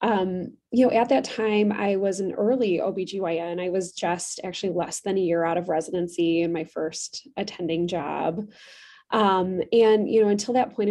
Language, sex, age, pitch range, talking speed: English, female, 20-39, 175-210 Hz, 185 wpm